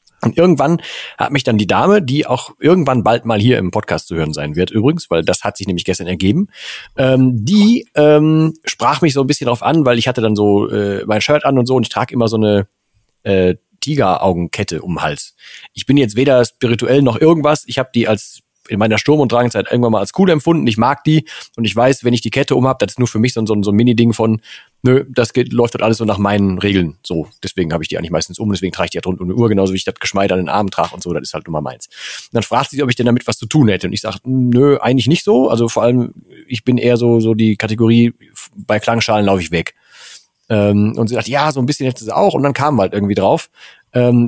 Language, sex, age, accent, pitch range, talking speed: German, male, 40-59, German, 105-140 Hz, 270 wpm